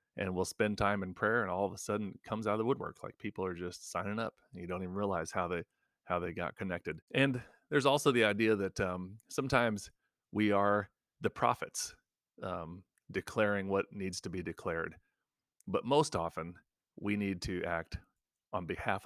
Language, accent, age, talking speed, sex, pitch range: English, American, 30-49, 190 wpm, male, 90-105 Hz